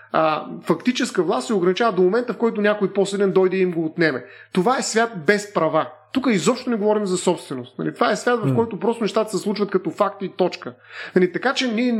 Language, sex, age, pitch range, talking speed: Bulgarian, male, 30-49, 185-245 Hz, 215 wpm